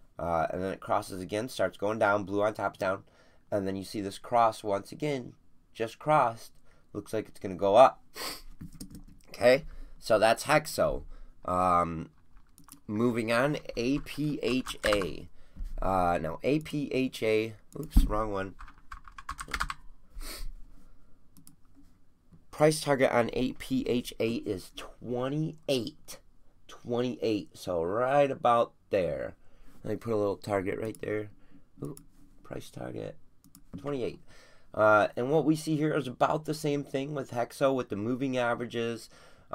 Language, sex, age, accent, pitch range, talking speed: English, male, 30-49, American, 95-125 Hz, 125 wpm